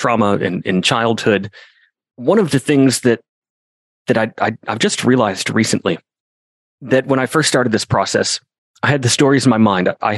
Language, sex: English, male